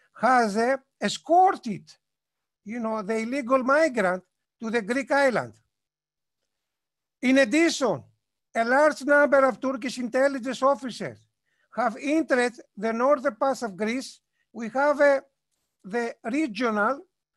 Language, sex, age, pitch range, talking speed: English, male, 60-79, 225-280 Hz, 115 wpm